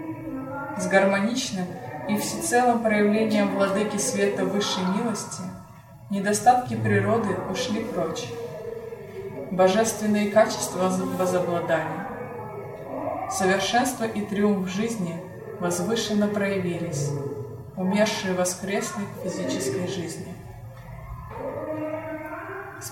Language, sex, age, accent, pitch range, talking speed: Russian, female, 20-39, native, 185-220 Hz, 70 wpm